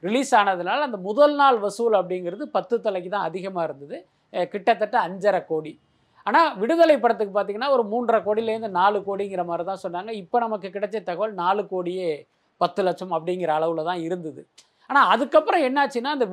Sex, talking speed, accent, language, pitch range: male, 155 wpm, native, Tamil, 180-245 Hz